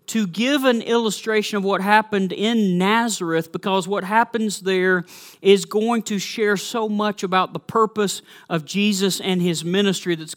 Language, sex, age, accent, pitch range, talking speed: English, male, 40-59, American, 170-205 Hz, 160 wpm